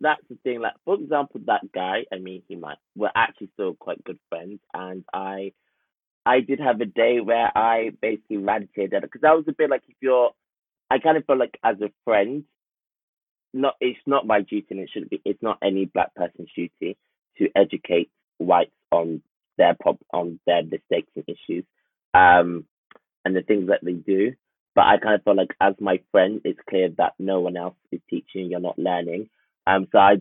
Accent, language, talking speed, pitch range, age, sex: British, English, 200 wpm, 95-125 Hz, 20-39, male